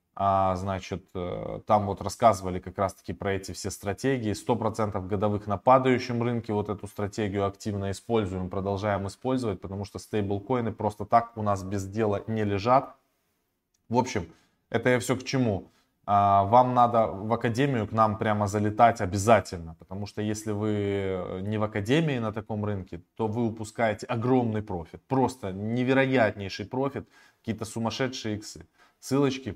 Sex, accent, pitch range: male, native, 95-115 Hz